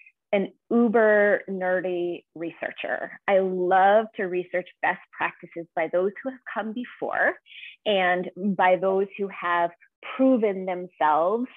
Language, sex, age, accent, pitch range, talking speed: English, female, 20-39, American, 180-230 Hz, 120 wpm